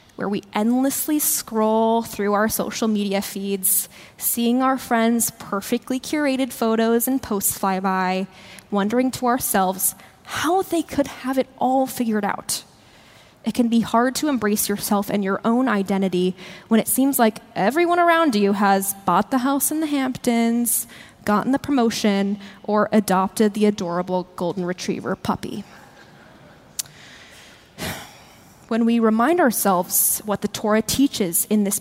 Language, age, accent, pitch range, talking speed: English, 10-29, American, 200-245 Hz, 140 wpm